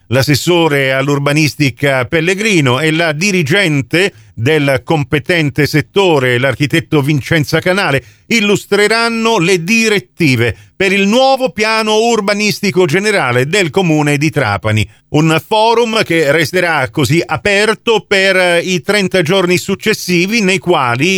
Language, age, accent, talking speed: Italian, 40-59, native, 110 wpm